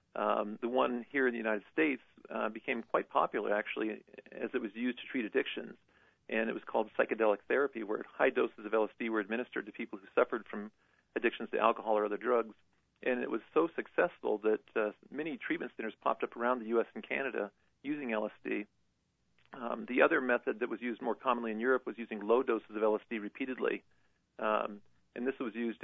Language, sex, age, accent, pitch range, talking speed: English, male, 40-59, American, 110-120 Hz, 195 wpm